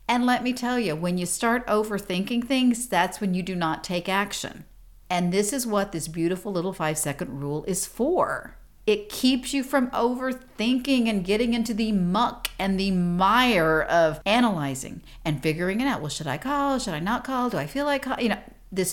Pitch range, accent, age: 175-255 Hz, American, 50-69